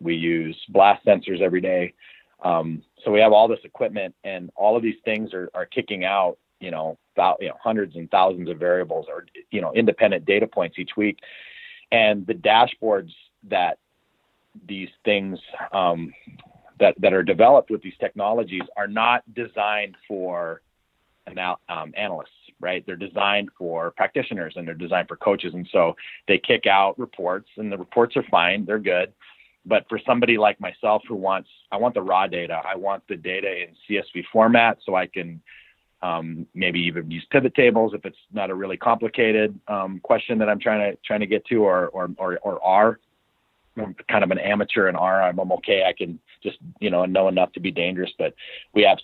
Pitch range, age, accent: 90-115 Hz, 40-59, American